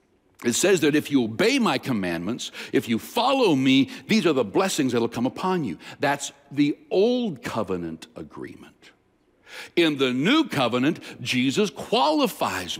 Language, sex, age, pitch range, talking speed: English, male, 60-79, 145-215 Hz, 150 wpm